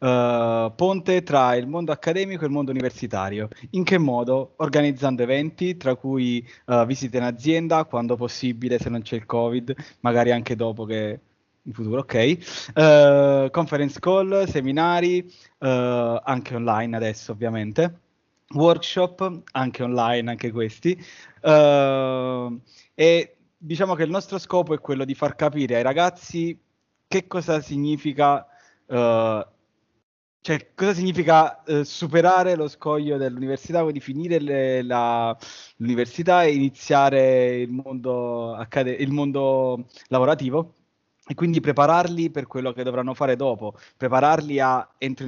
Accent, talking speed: native, 125 wpm